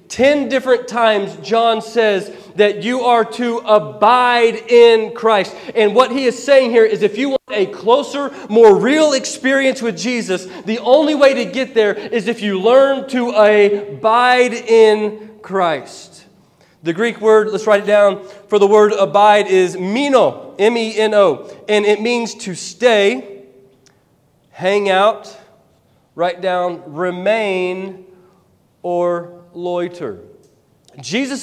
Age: 30-49